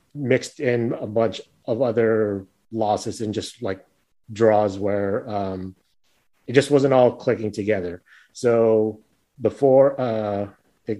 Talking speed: 130 wpm